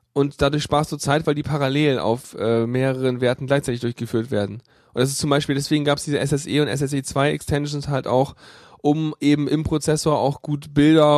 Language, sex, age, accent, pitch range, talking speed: German, male, 10-29, German, 125-150 Hz, 205 wpm